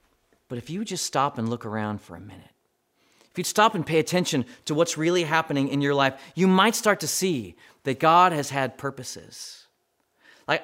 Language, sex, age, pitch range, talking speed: English, male, 30-49, 160-215 Hz, 195 wpm